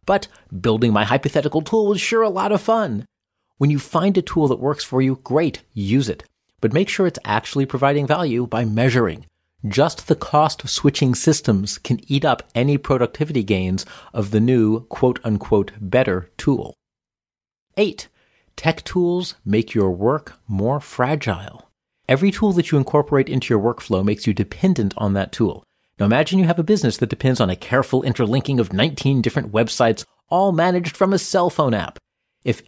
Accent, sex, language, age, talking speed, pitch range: American, male, English, 40-59, 175 wpm, 110-150 Hz